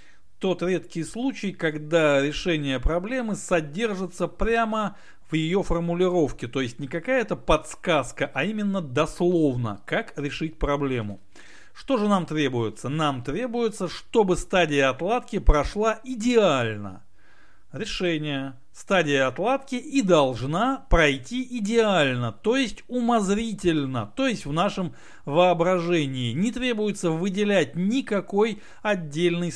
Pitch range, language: 150-210 Hz, Russian